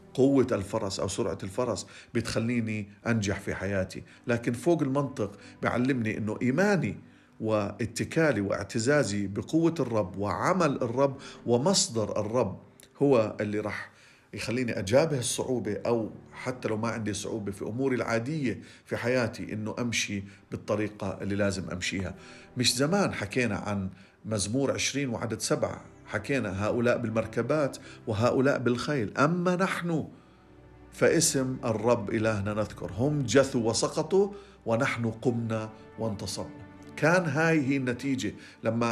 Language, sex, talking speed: Arabic, male, 115 wpm